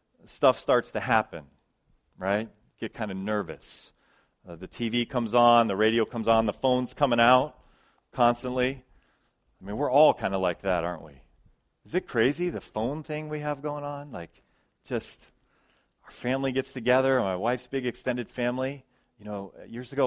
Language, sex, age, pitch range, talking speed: English, male, 40-59, 120-170 Hz, 175 wpm